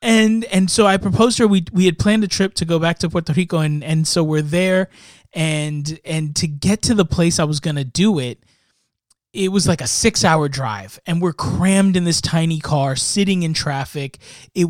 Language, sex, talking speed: English, male, 220 wpm